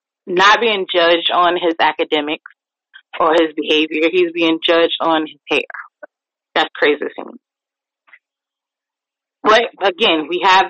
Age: 30-49